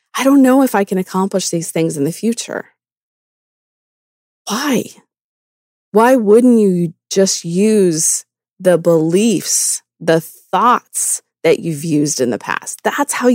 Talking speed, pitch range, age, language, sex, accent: 135 wpm, 165-225 Hz, 30-49, English, female, American